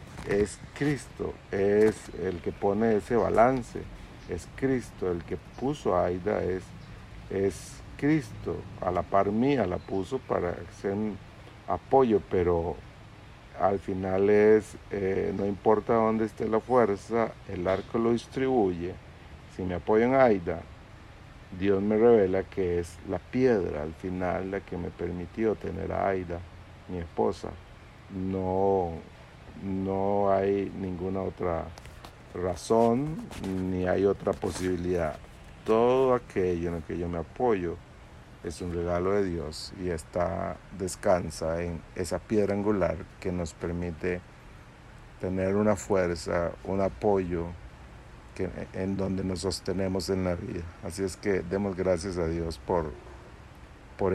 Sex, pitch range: male, 85-100 Hz